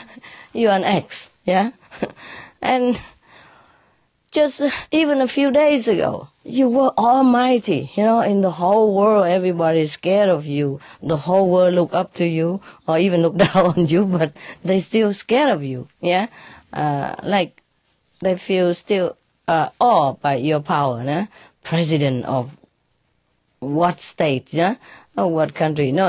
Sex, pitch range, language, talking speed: female, 145-205 Hz, English, 150 wpm